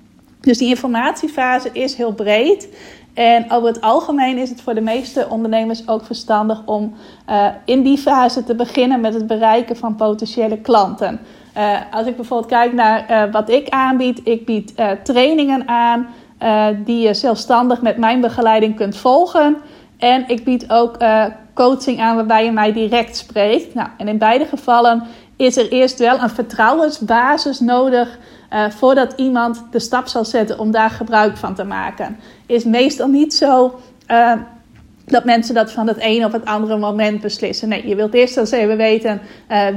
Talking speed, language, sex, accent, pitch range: 175 wpm, Dutch, female, Dutch, 220-250 Hz